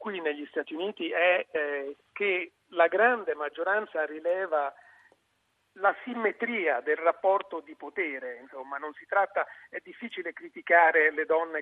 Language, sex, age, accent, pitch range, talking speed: Italian, male, 50-69, native, 145-190 Hz, 135 wpm